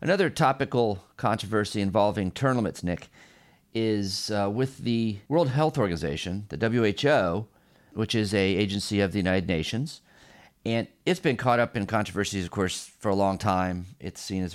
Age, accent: 40-59, American